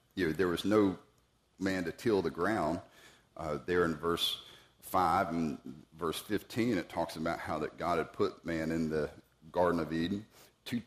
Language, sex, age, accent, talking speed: English, male, 40-59, American, 180 wpm